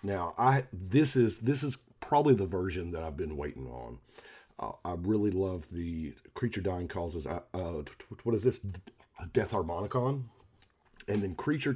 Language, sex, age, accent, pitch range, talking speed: English, male, 40-59, American, 85-115 Hz, 185 wpm